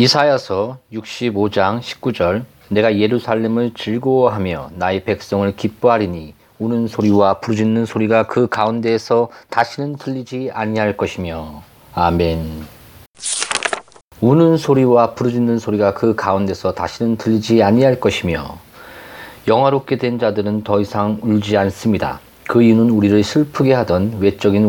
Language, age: Korean, 40-59